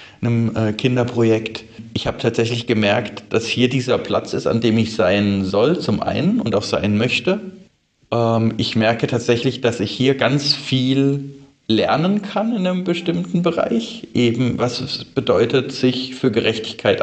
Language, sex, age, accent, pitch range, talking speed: German, male, 40-59, German, 110-140 Hz, 160 wpm